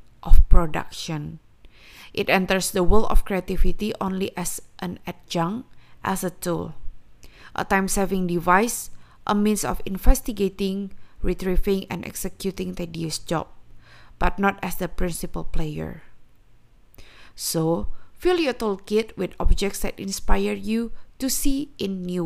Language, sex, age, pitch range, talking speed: Indonesian, female, 20-39, 170-215 Hz, 125 wpm